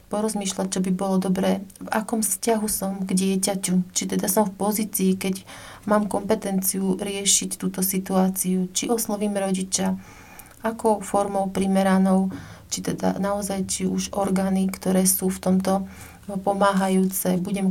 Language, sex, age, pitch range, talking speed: Slovak, female, 30-49, 185-200 Hz, 130 wpm